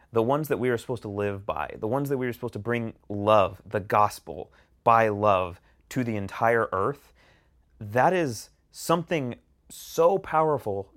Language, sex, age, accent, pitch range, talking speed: English, male, 30-49, American, 100-140 Hz, 170 wpm